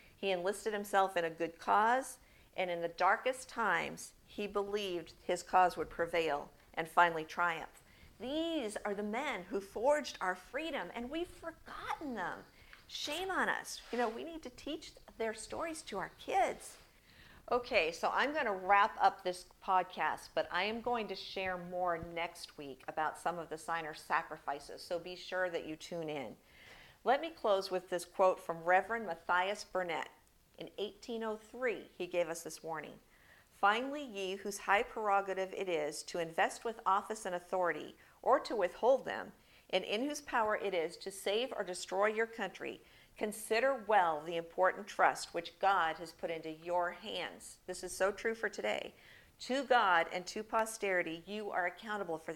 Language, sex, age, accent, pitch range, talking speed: English, female, 50-69, American, 175-225 Hz, 175 wpm